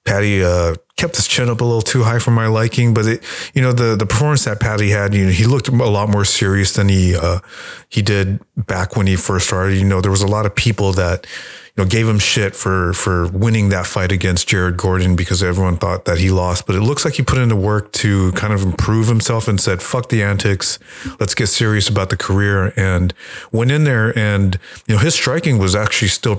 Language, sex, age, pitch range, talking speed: English, male, 30-49, 95-115 Hz, 240 wpm